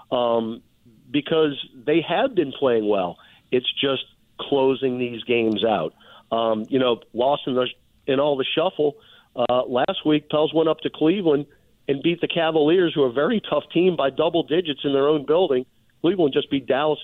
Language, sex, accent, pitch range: English, male, American, 115-150 Hz